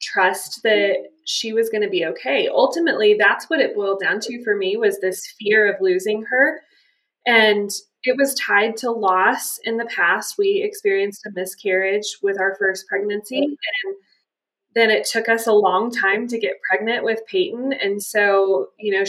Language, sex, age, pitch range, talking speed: English, female, 20-39, 205-325 Hz, 180 wpm